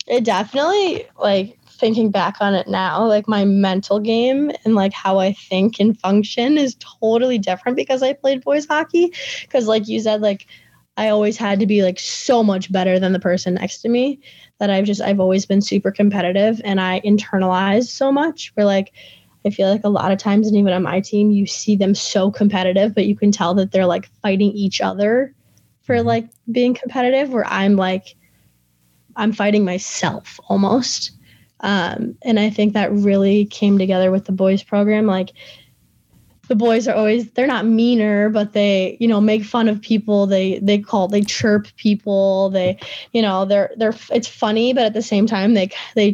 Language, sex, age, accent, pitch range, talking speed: English, female, 10-29, American, 195-225 Hz, 190 wpm